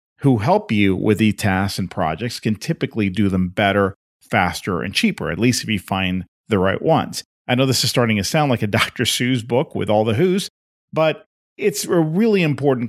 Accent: American